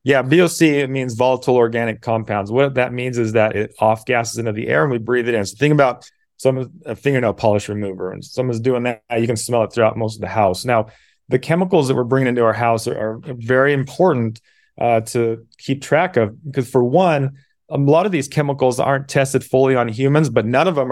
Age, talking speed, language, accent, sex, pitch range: 30-49, 225 wpm, English, American, male, 110-135 Hz